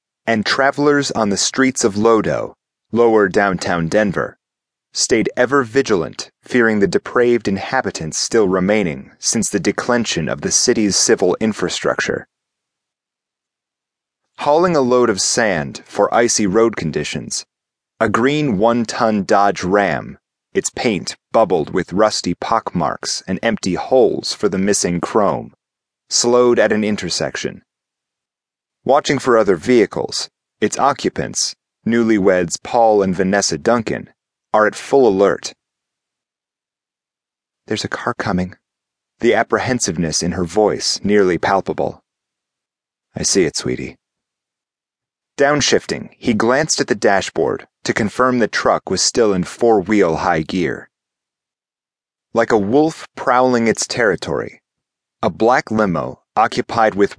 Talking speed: 120 wpm